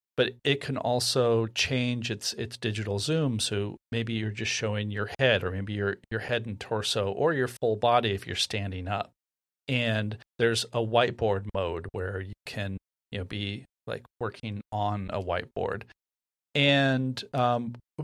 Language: English